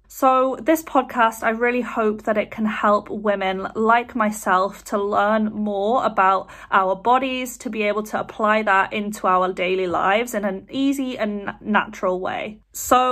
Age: 30-49